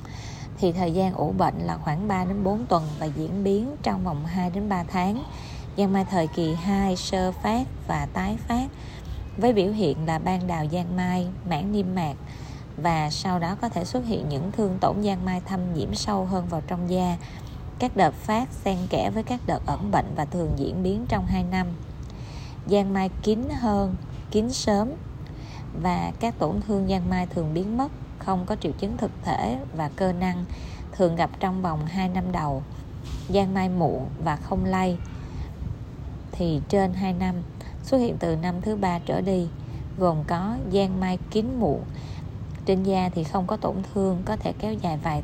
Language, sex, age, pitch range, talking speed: Vietnamese, female, 20-39, 165-195 Hz, 185 wpm